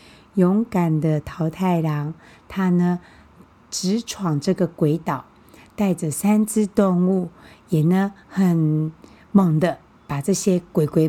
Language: Chinese